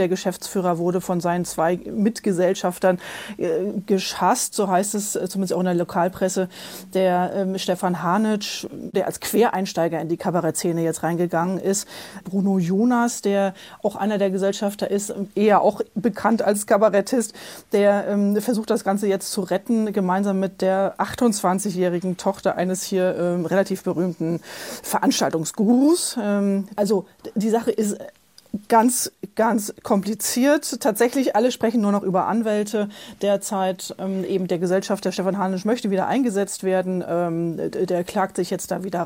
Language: German